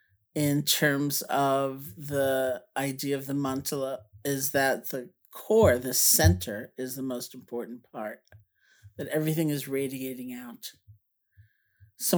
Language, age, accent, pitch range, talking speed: English, 50-69, American, 125-155 Hz, 125 wpm